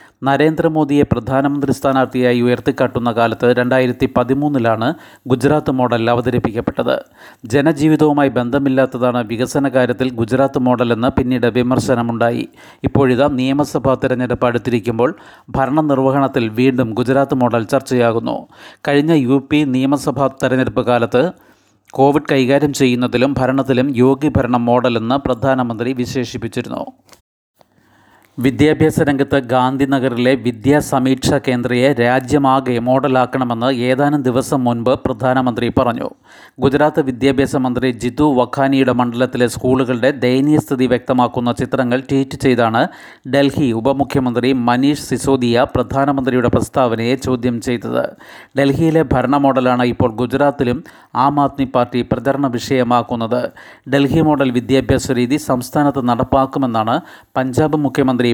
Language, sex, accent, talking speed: Malayalam, male, native, 95 wpm